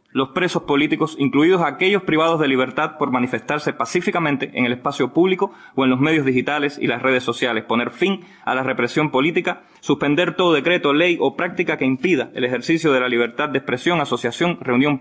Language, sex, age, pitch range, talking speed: English, male, 20-39, 130-165 Hz, 190 wpm